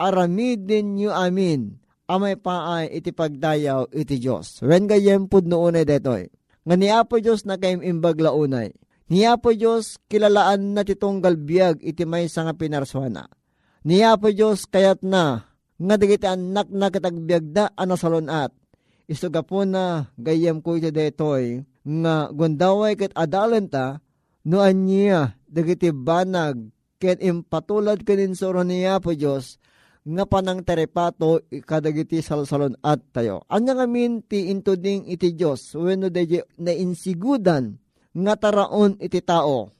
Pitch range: 160-200 Hz